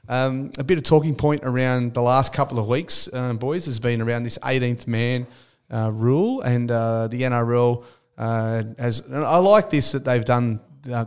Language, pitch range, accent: English, 115-130 Hz, Australian